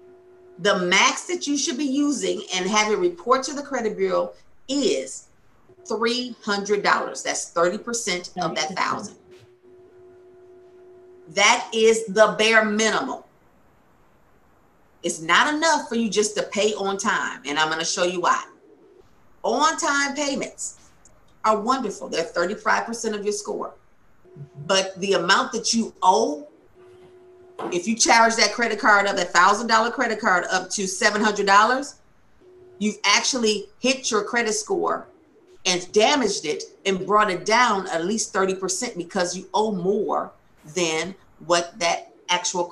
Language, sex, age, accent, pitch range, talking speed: English, female, 40-59, American, 185-285 Hz, 145 wpm